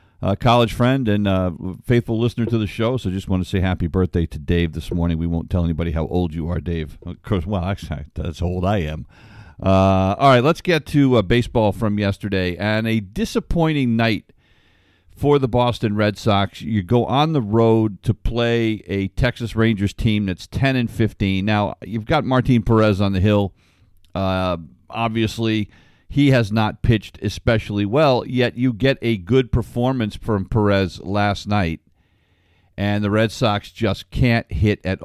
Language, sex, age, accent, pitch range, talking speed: English, male, 50-69, American, 95-120 Hz, 185 wpm